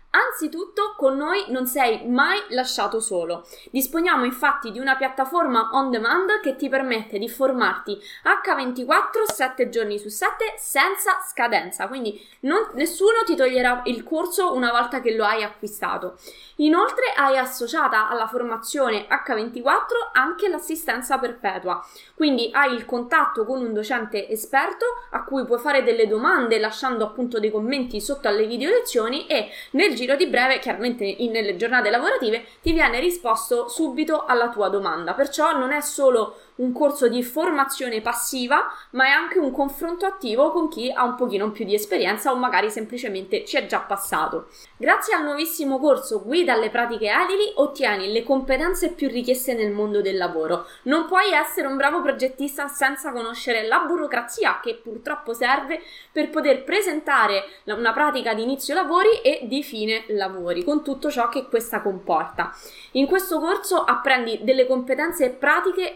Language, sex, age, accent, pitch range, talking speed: Italian, female, 20-39, native, 230-320 Hz, 155 wpm